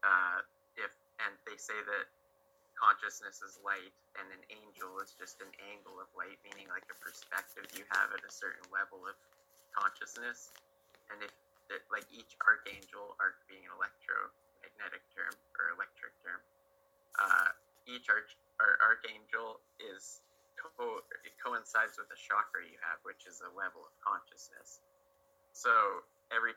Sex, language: male, English